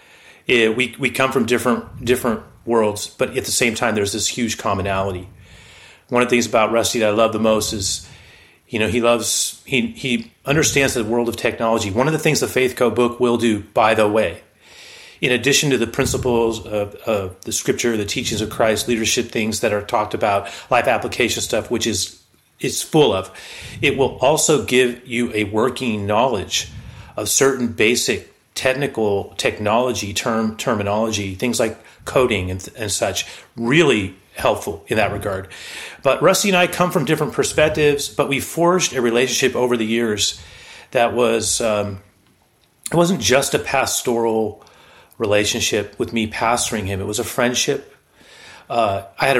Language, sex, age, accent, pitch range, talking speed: English, male, 30-49, American, 105-125 Hz, 175 wpm